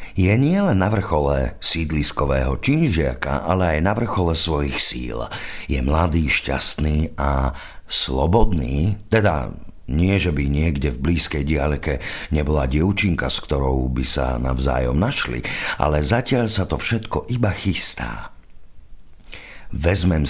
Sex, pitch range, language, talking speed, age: male, 70-95 Hz, Slovak, 120 wpm, 50-69